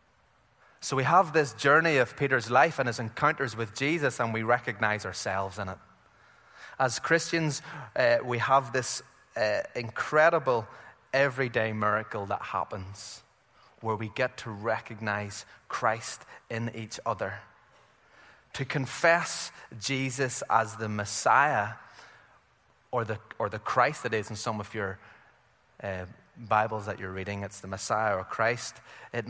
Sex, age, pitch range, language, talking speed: male, 20-39, 110-140 Hz, English, 140 wpm